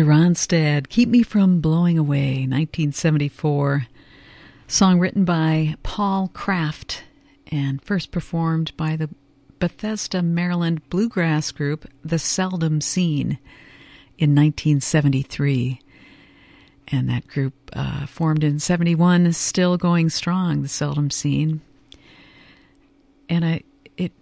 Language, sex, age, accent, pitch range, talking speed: English, female, 50-69, American, 140-180 Hz, 105 wpm